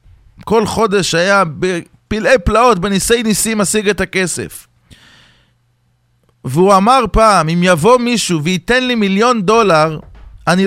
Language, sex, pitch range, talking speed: English, male, 140-215 Hz, 120 wpm